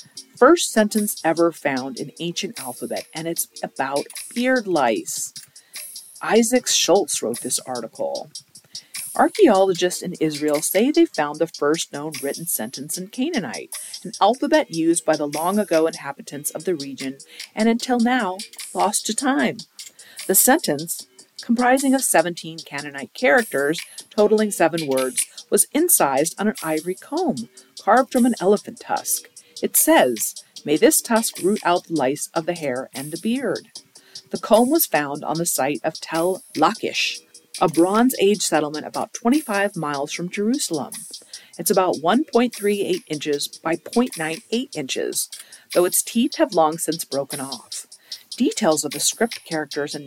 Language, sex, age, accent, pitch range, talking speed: English, female, 50-69, American, 155-230 Hz, 145 wpm